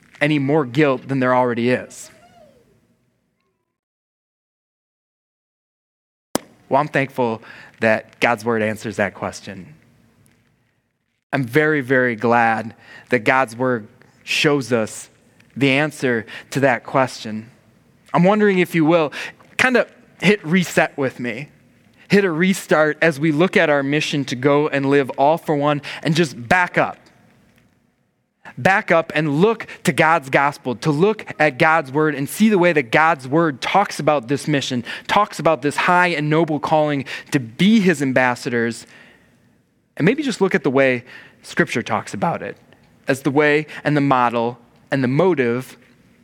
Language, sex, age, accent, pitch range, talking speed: English, male, 20-39, American, 125-165 Hz, 150 wpm